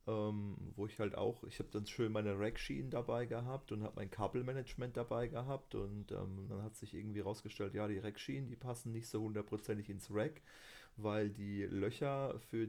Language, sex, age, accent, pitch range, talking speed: German, male, 30-49, German, 105-130 Hz, 185 wpm